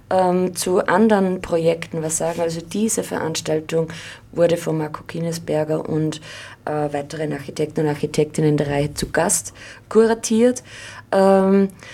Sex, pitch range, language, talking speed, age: female, 150-190 Hz, German, 125 wpm, 20-39